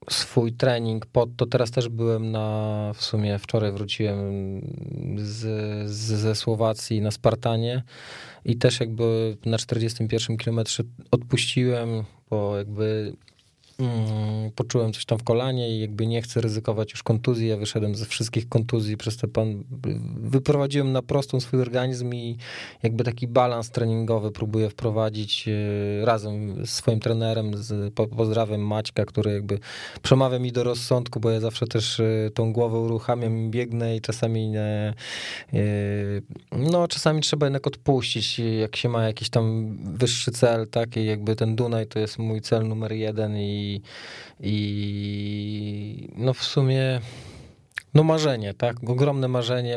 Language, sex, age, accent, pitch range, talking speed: Polish, male, 20-39, native, 110-125 Hz, 135 wpm